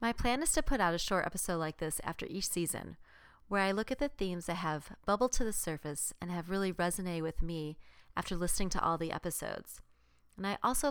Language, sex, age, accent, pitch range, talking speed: English, female, 30-49, American, 165-220 Hz, 225 wpm